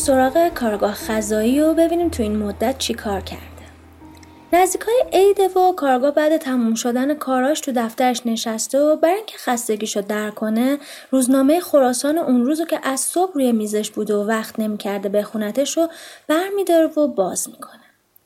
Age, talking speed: 20-39, 155 wpm